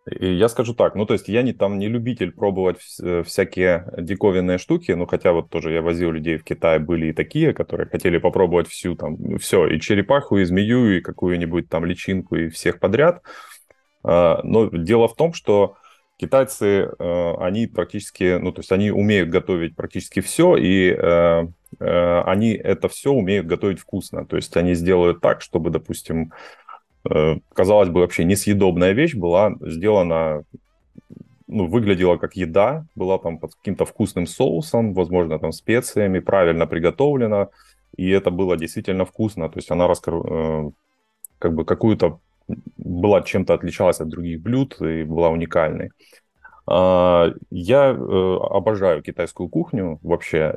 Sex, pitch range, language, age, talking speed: male, 85-100 Hz, Ukrainian, 20-39, 145 wpm